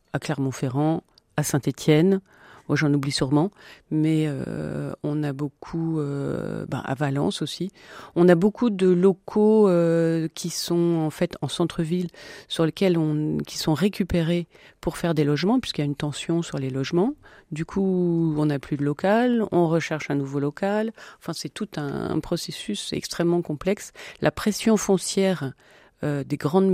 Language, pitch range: French, 155-190 Hz